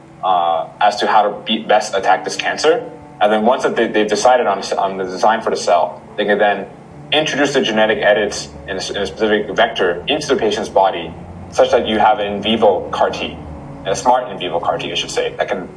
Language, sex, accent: English, male, American